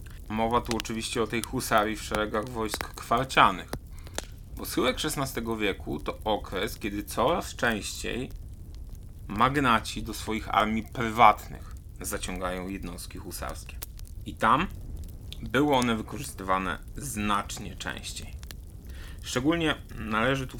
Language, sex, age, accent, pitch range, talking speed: Polish, male, 30-49, native, 90-120 Hz, 105 wpm